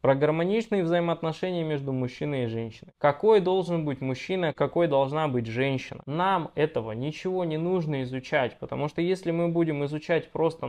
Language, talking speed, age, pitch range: Russian, 155 wpm, 20-39, 135-180 Hz